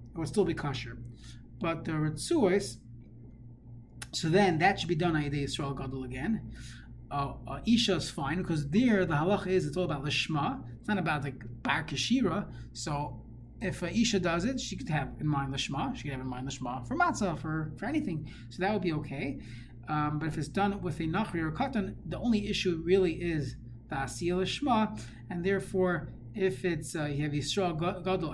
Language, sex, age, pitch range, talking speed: English, male, 30-49, 125-180 Hz, 200 wpm